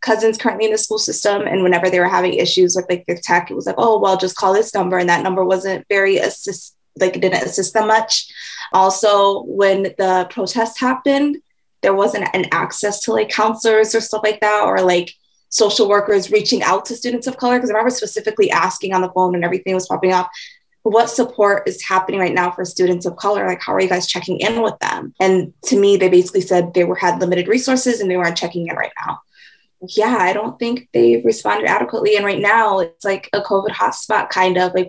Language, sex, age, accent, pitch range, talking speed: English, female, 20-39, American, 185-220 Hz, 225 wpm